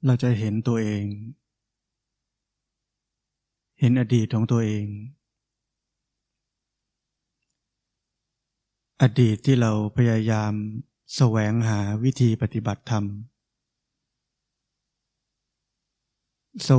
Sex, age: male, 20-39